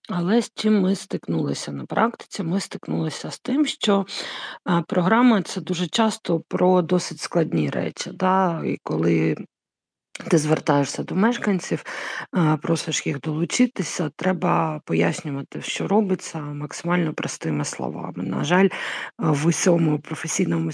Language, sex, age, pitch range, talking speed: Ukrainian, female, 50-69, 155-200 Hz, 120 wpm